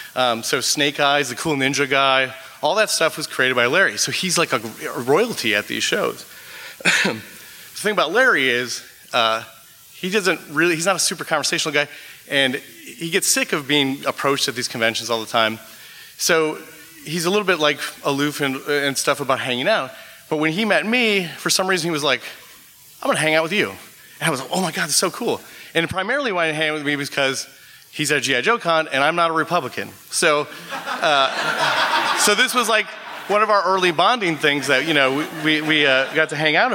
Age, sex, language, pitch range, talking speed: 30-49, male, English, 135-180 Hz, 210 wpm